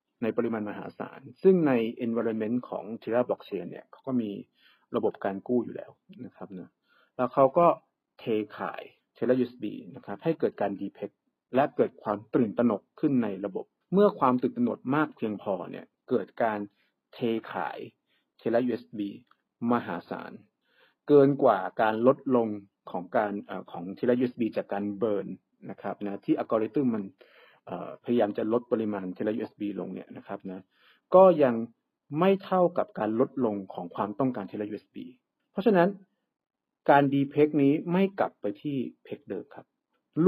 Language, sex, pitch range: Thai, male, 105-150 Hz